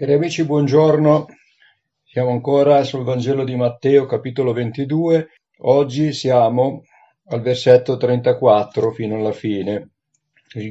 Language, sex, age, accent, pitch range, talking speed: Italian, male, 50-69, native, 110-140 Hz, 110 wpm